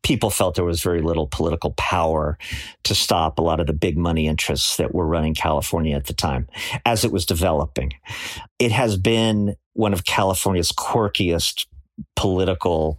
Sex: male